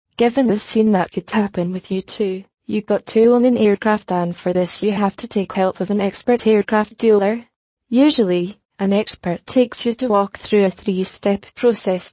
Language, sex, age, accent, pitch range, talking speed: English, female, 20-39, British, 190-225 Hz, 195 wpm